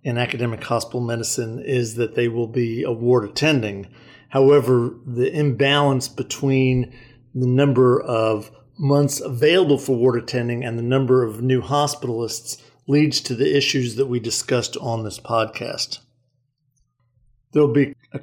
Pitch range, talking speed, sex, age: 120-135 Hz, 145 wpm, male, 50-69